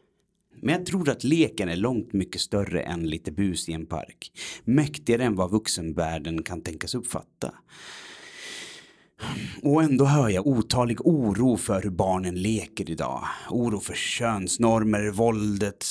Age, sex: 30-49, male